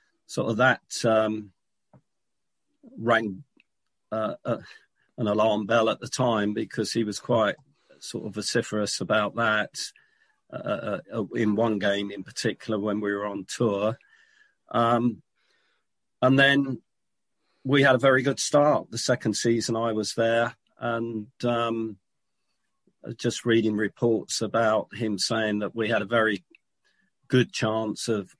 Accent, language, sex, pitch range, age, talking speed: British, English, male, 105-120 Hz, 40-59, 135 wpm